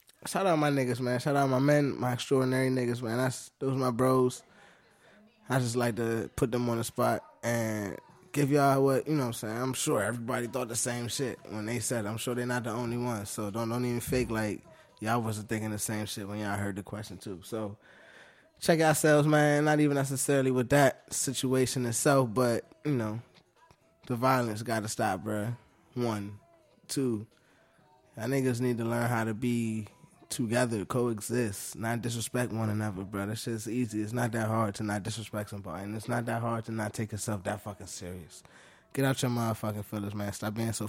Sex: male